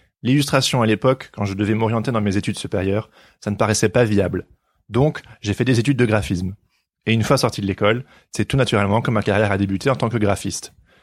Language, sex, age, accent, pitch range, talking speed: French, male, 20-39, French, 105-140 Hz, 225 wpm